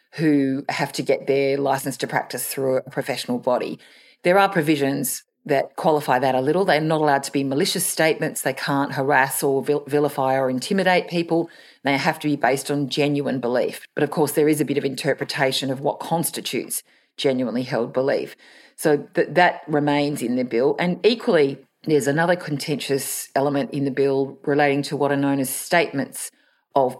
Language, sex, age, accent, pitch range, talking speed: English, female, 40-59, Australian, 135-155 Hz, 180 wpm